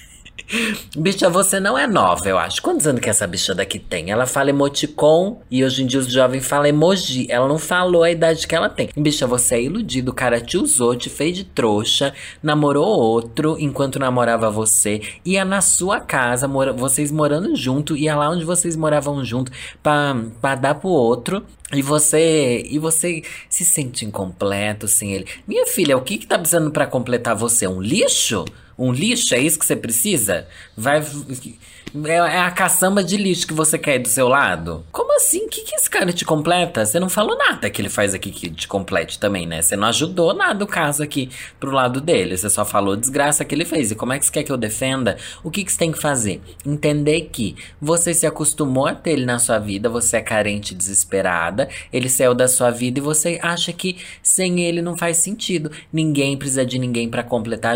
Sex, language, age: male, Portuguese, 20-39